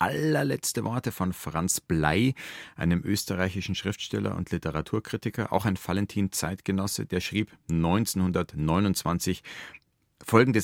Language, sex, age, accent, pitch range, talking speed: German, male, 40-59, German, 85-110 Hz, 95 wpm